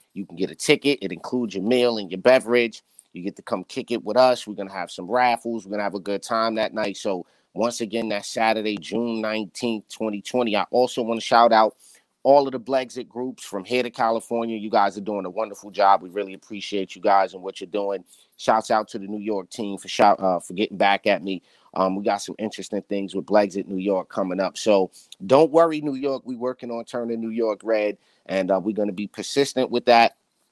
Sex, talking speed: male, 240 wpm